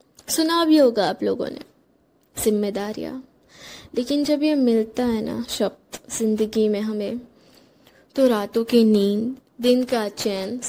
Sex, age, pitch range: female, 10-29, 220-270 Hz